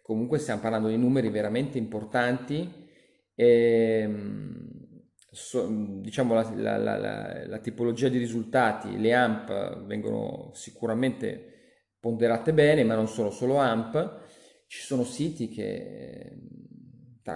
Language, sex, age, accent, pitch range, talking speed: Italian, male, 30-49, native, 110-135 Hz, 110 wpm